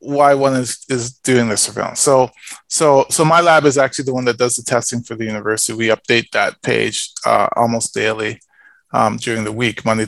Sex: male